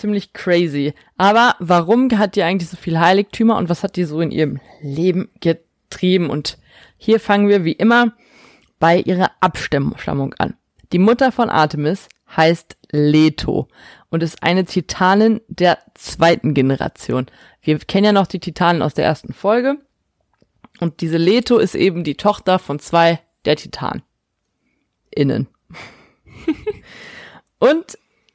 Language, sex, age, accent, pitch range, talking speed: German, female, 20-39, German, 160-205 Hz, 140 wpm